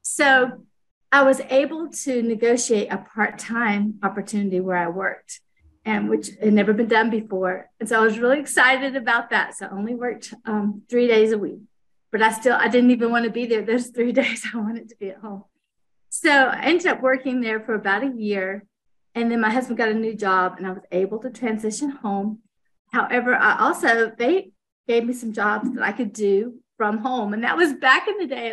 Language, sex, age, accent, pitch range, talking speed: English, female, 40-59, American, 215-270 Hz, 210 wpm